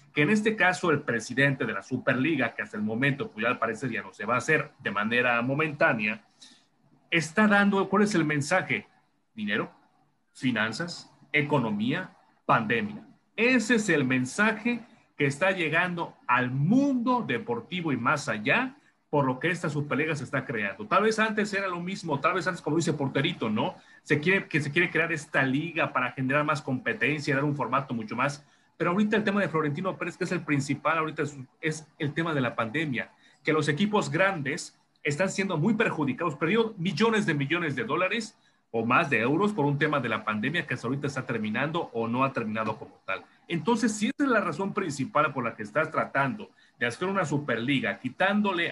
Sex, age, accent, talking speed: male, 40-59, Mexican, 195 wpm